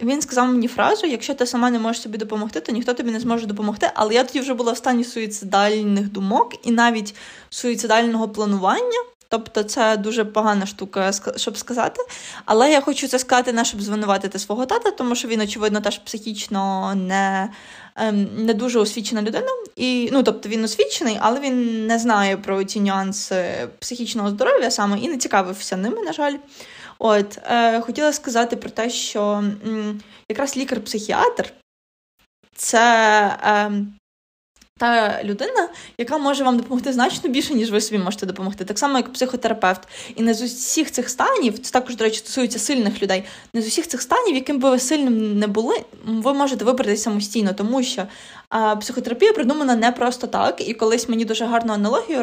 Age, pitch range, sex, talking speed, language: 20-39, 210-250 Hz, female, 170 wpm, Ukrainian